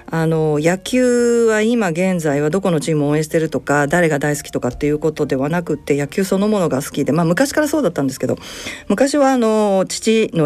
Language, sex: Japanese, female